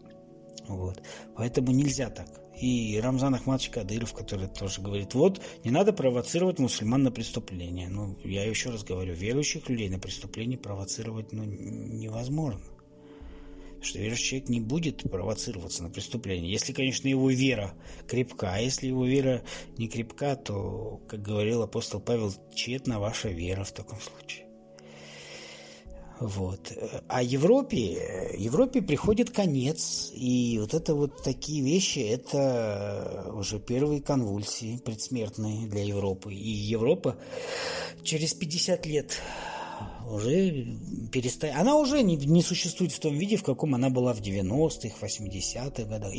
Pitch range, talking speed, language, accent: 105-140 Hz, 135 wpm, Russian, native